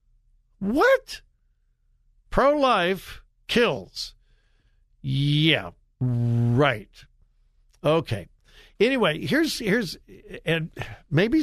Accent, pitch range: American, 135-225 Hz